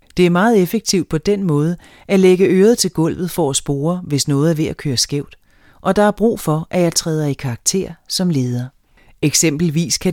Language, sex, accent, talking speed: Danish, female, native, 215 wpm